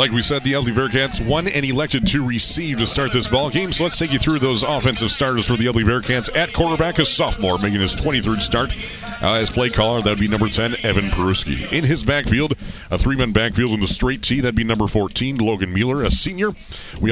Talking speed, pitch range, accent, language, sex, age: 235 wpm, 95-125 Hz, American, English, male, 40-59